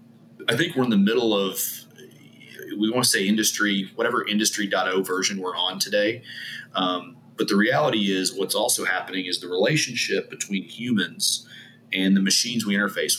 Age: 30-49